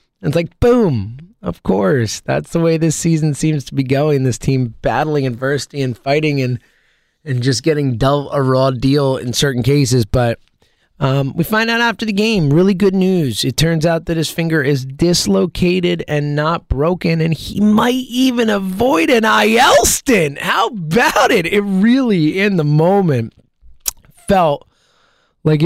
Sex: male